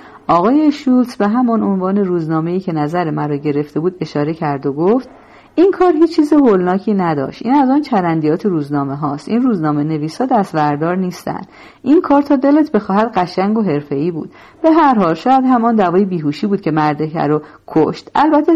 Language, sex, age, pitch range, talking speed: Persian, female, 40-59, 160-245 Hz, 180 wpm